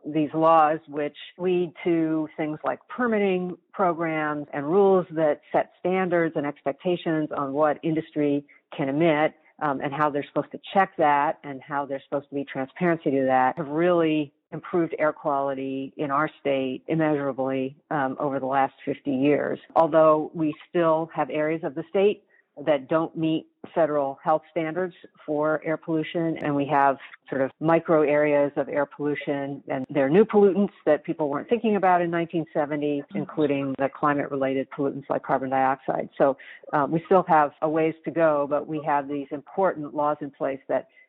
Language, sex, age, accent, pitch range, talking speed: English, female, 40-59, American, 140-160 Hz, 175 wpm